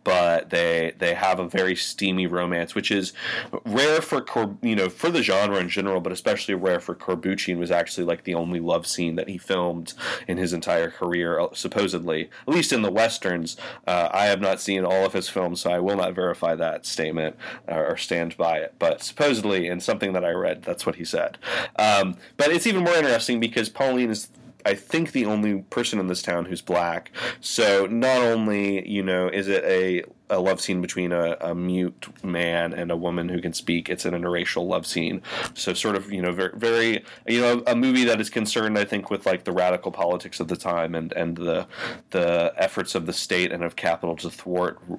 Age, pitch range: 30-49, 85-100 Hz